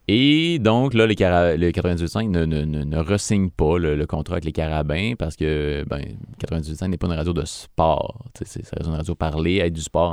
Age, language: 30-49, French